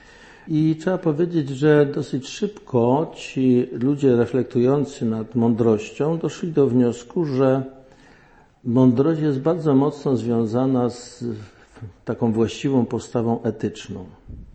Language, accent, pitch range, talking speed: Polish, native, 115-140 Hz, 105 wpm